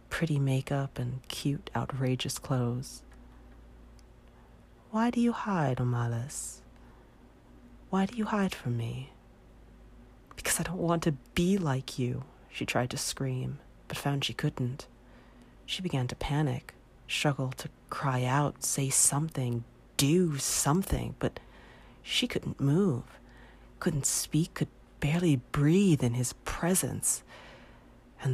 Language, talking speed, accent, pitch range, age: English, 125 wpm, American, 125-160 Hz, 40-59